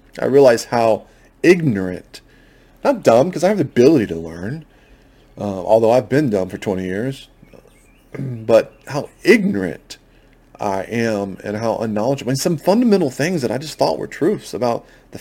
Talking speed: 160 wpm